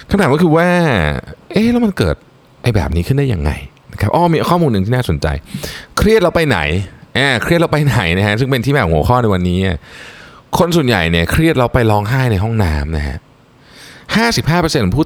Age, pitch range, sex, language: 20-39, 85-130 Hz, male, Thai